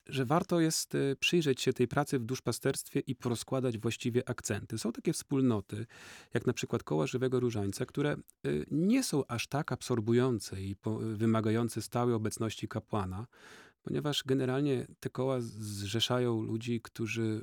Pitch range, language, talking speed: 110-135 Hz, Polish, 140 wpm